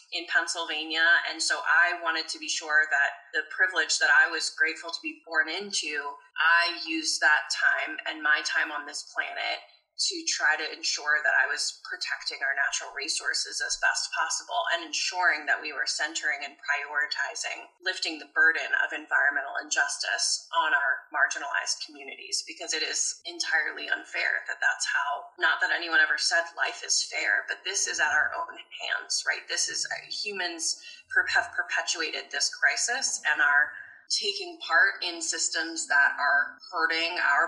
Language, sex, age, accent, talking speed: English, female, 20-39, American, 165 wpm